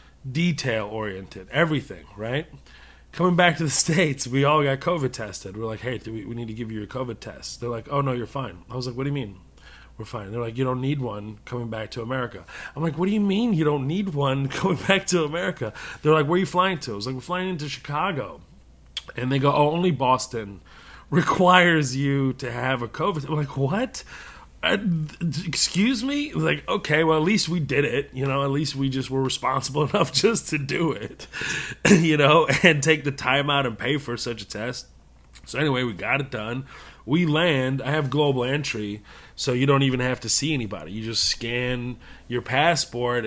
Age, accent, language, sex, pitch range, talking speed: 30-49, American, English, male, 120-155 Hz, 215 wpm